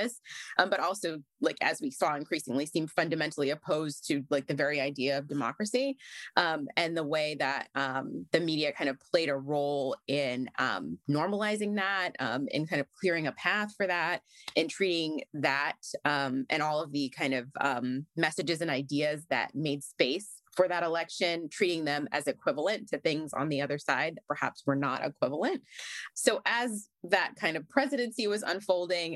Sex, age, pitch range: female, 20-39, 140-190 Hz